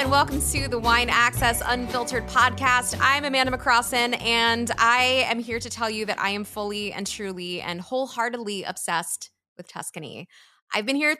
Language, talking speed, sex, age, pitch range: English, 170 wpm, female, 20-39, 185-250 Hz